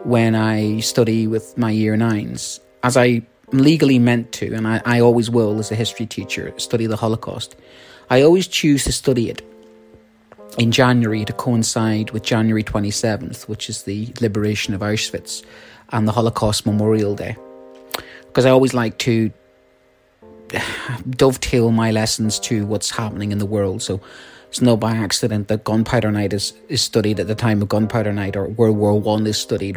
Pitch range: 105-120 Hz